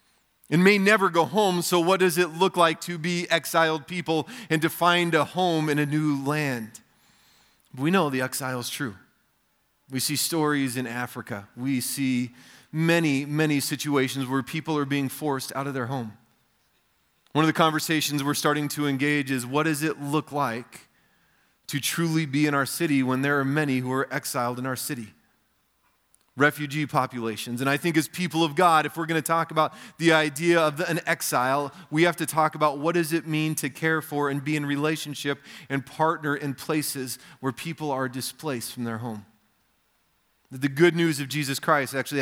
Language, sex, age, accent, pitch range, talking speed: English, male, 30-49, American, 130-160 Hz, 190 wpm